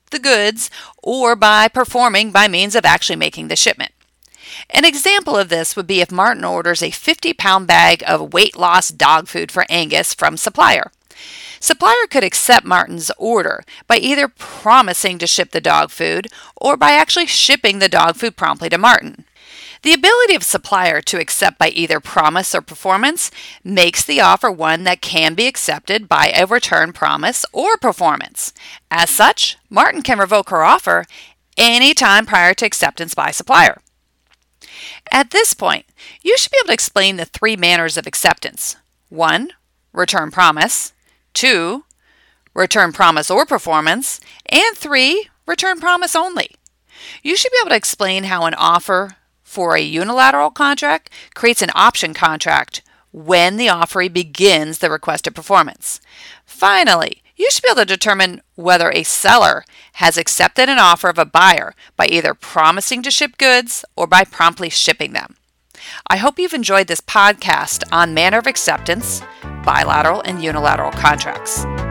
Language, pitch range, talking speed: English, 175-280 Hz, 160 wpm